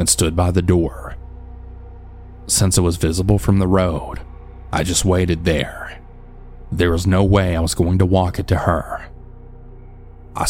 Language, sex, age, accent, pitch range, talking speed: English, male, 30-49, American, 80-95 Hz, 165 wpm